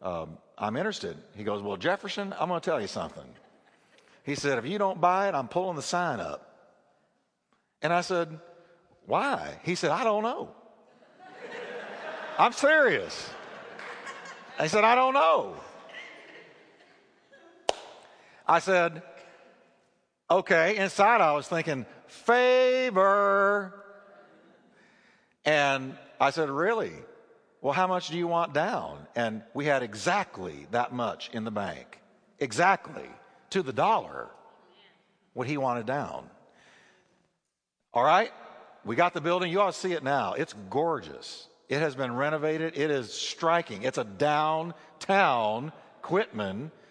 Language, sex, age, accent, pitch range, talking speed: English, male, 60-79, American, 150-205 Hz, 130 wpm